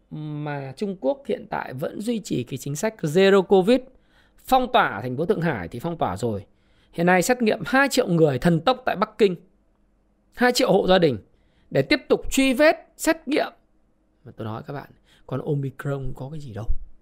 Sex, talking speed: male, 205 wpm